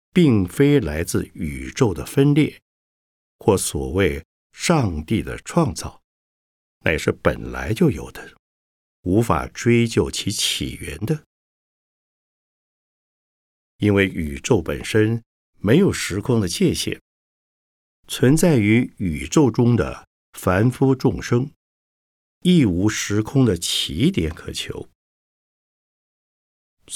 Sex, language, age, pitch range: male, Chinese, 60-79, 80-120 Hz